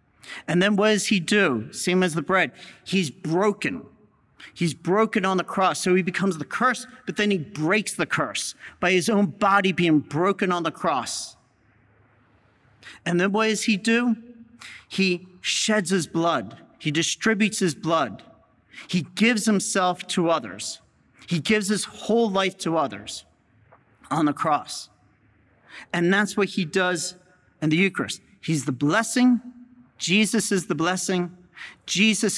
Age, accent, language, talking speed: 40-59, American, English, 150 wpm